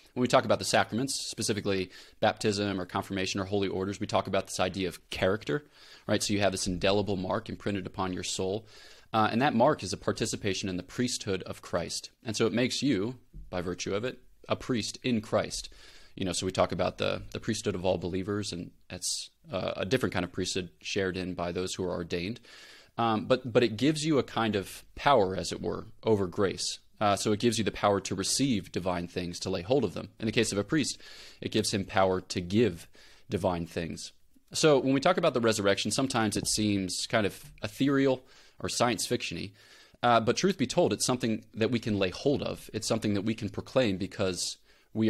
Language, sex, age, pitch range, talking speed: English, male, 20-39, 95-115 Hz, 220 wpm